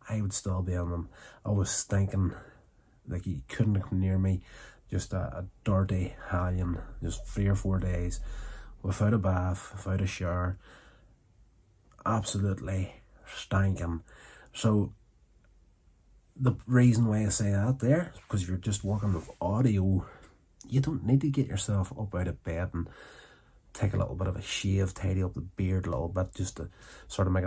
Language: English